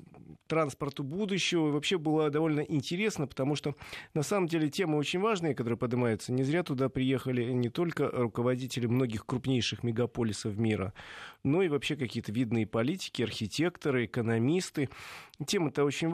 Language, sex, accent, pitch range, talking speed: Russian, male, native, 120-150 Hz, 140 wpm